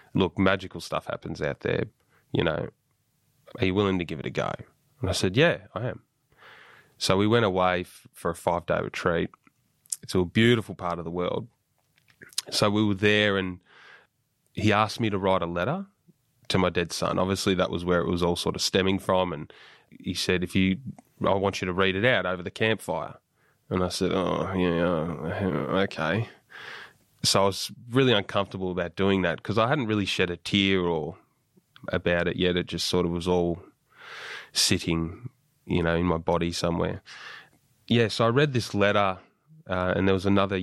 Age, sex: 20-39, male